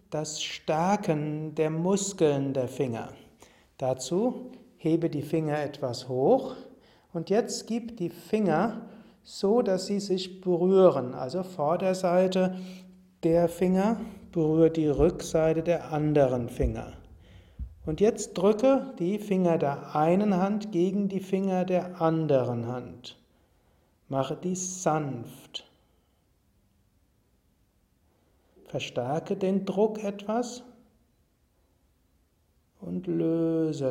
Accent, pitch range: German, 115-190 Hz